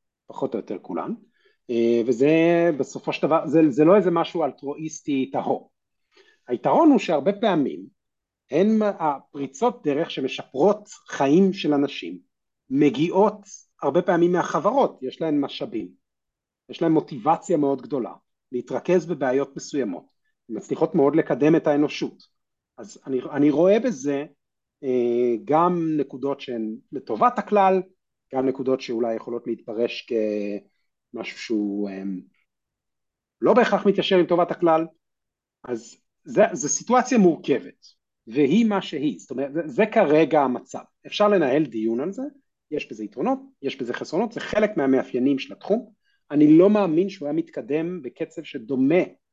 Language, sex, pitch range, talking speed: Hebrew, male, 135-195 Hz, 130 wpm